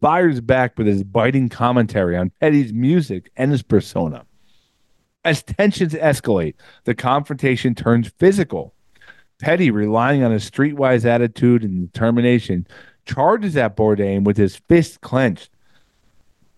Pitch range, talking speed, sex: 110-140 Hz, 125 wpm, male